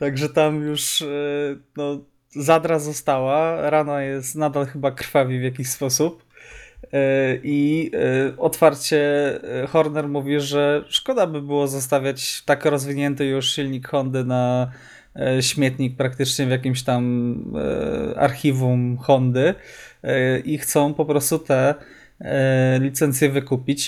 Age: 20-39